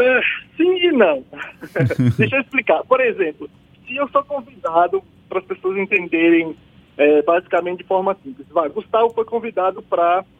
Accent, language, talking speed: Brazilian, Portuguese, 150 wpm